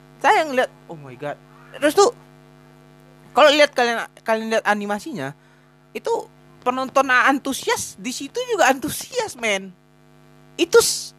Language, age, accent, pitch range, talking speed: Indonesian, 20-39, native, 205-295 Hz, 120 wpm